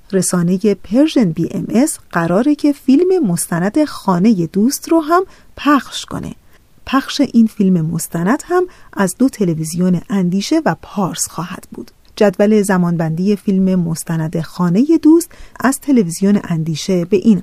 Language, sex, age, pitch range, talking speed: Persian, female, 40-59, 175-260 Hz, 130 wpm